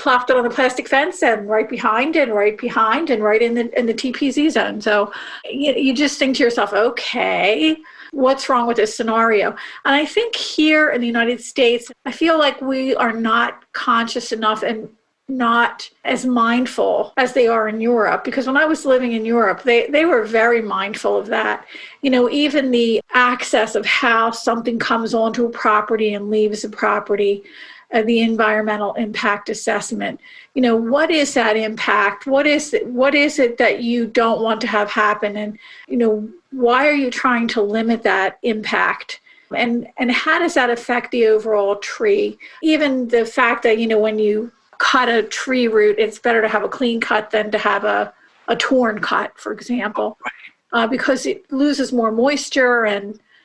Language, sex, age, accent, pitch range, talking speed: English, female, 40-59, American, 220-265 Hz, 185 wpm